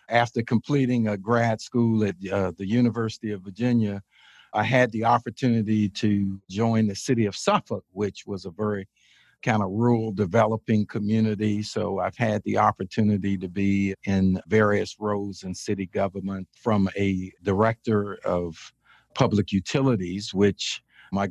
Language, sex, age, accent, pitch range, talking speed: English, male, 50-69, American, 95-115 Hz, 145 wpm